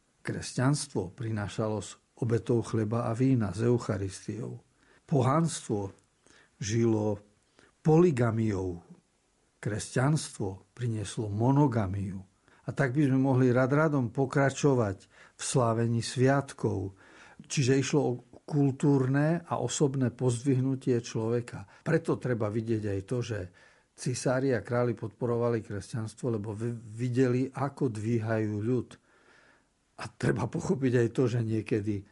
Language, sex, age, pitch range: Slovak, male, 50-69, 110-135 Hz